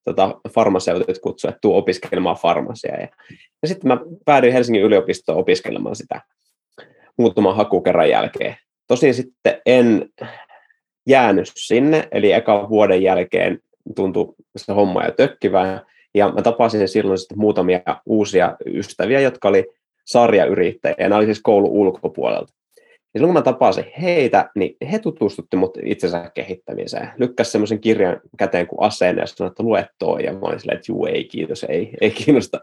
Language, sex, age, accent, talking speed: Finnish, male, 20-39, native, 145 wpm